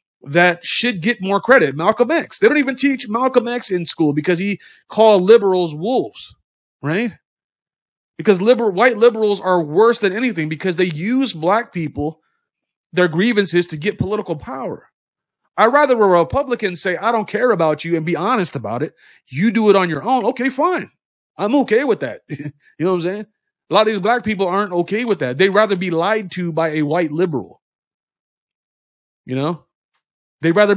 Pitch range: 155-210 Hz